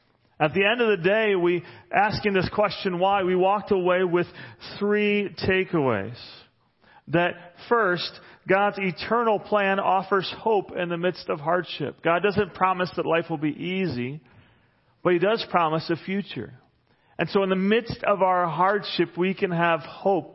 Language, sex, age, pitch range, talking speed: English, male, 40-59, 155-195 Hz, 160 wpm